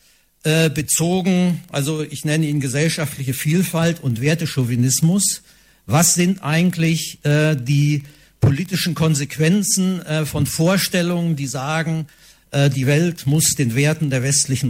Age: 50-69